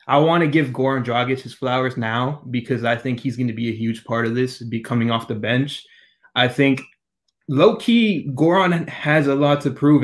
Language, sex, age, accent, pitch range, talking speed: English, male, 20-39, American, 115-140 Hz, 215 wpm